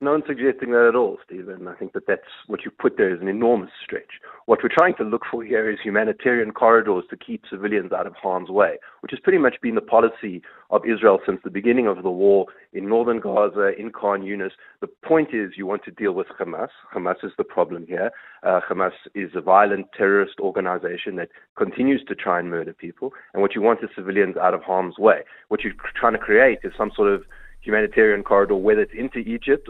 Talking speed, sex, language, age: 220 wpm, male, English, 30-49